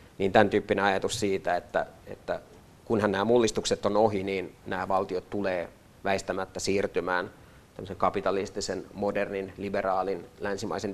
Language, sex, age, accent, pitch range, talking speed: Finnish, male, 30-49, native, 105-130 Hz, 125 wpm